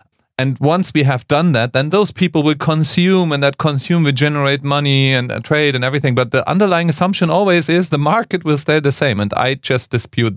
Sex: male